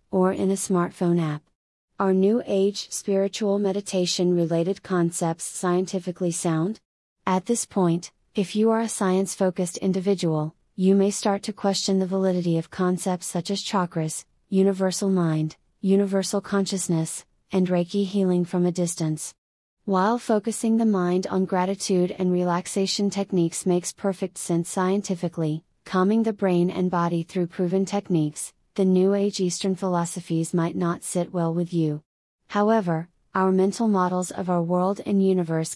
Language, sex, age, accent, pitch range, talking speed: English, female, 30-49, American, 175-195 Hz, 145 wpm